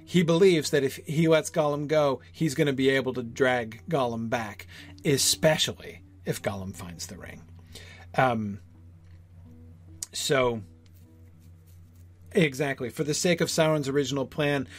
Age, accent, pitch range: 40-59, American, 90-150 Hz